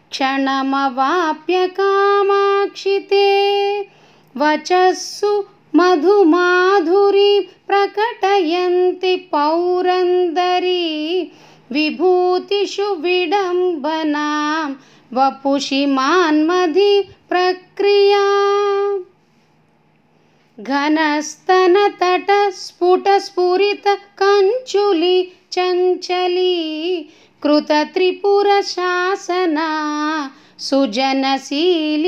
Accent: native